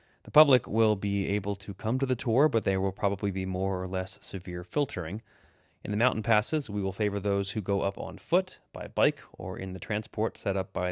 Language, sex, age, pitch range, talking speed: English, male, 30-49, 95-115 Hz, 230 wpm